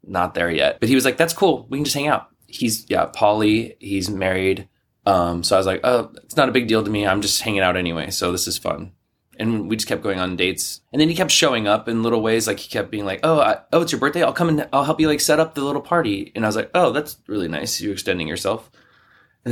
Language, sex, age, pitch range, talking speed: English, male, 20-39, 95-130 Hz, 285 wpm